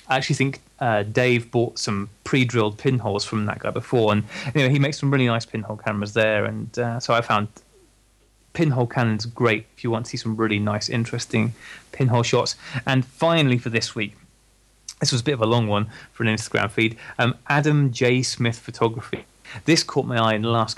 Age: 20-39